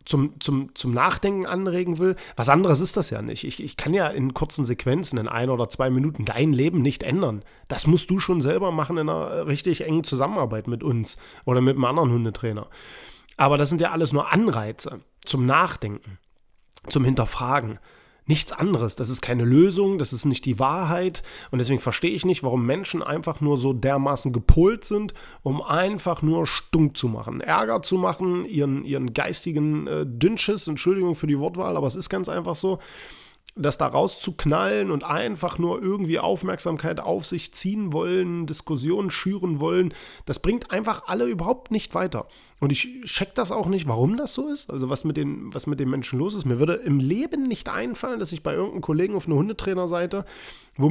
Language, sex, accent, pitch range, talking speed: German, male, German, 135-185 Hz, 190 wpm